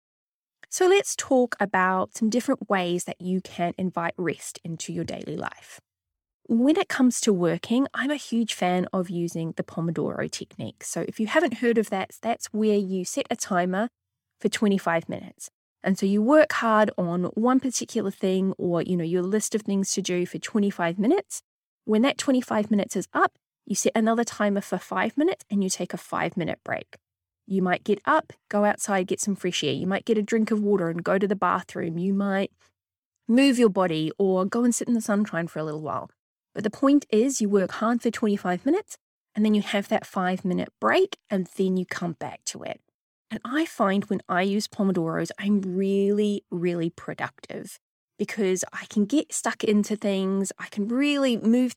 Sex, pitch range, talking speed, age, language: female, 180-230 Hz, 200 wpm, 10-29, English